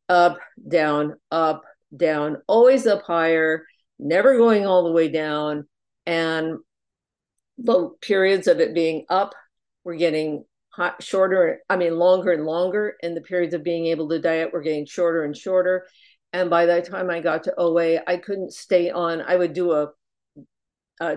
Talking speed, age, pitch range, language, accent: 165 wpm, 50-69, 160-185 Hz, English, American